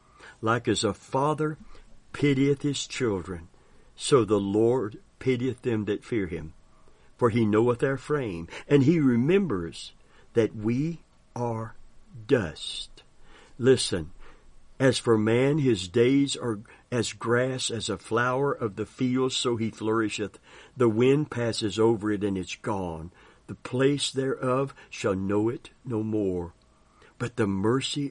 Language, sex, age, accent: English, male, 60-79, American